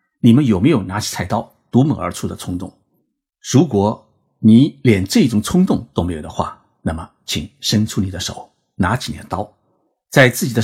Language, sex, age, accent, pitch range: Chinese, male, 50-69, native, 95-120 Hz